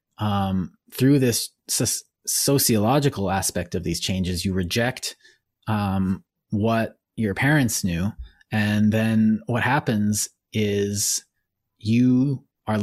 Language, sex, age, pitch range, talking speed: English, male, 30-49, 95-120 Hz, 105 wpm